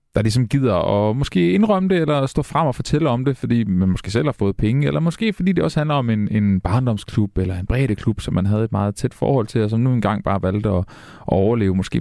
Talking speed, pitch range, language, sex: 260 wpm, 100-135 Hz, Danish, male